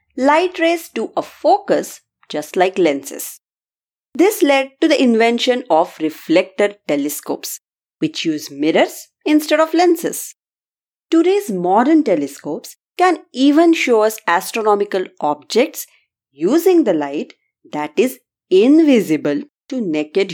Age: 30-49